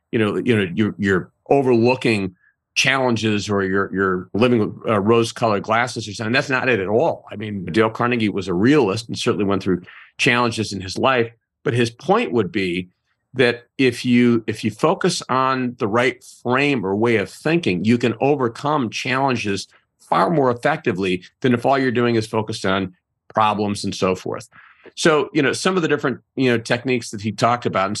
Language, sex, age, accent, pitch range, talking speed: English, male, 40-59, American, 105-125 Hz, 195 wpm